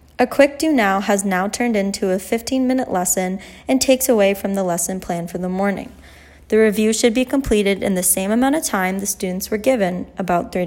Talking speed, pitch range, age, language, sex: 215 wpm, 190-245 Hz, 20-39, English, female